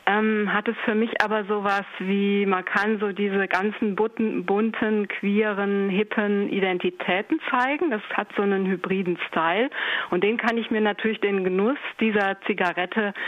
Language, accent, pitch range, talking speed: German, German, 185-220 Hz, 155 wpm